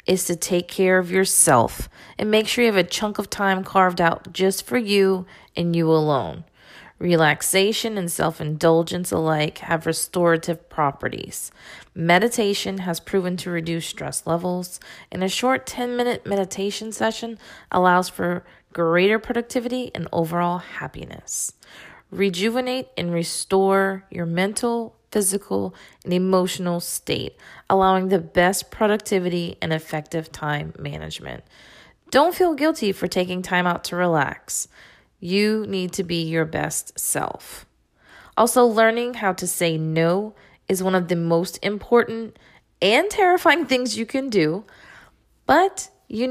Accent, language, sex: American, English, female